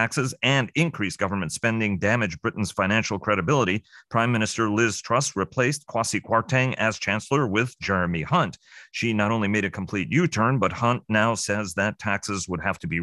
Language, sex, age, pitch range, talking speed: English, male, 40-59, 95-120 Hz, 180 wpm